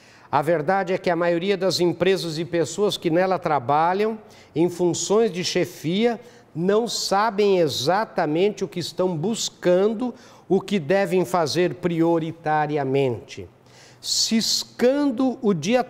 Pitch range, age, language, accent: 165-200 Hz, 60-79, Portuguese, Brazilian